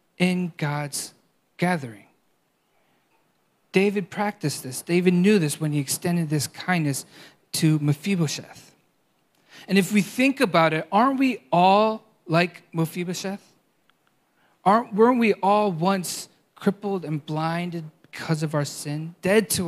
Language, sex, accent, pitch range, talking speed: English, male, American, 155-200 Hz, 120 wpm